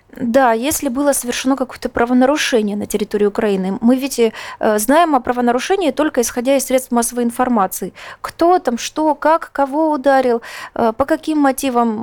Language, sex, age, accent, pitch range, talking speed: Russian, female, 20-39, native, 240-300 Hz, 145 wpm